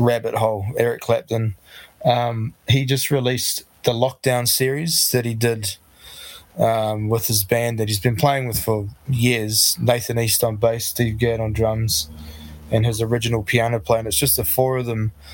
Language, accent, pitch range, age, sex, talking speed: English, Australian, 110-125 Hz, 20-39, male, 175 wpm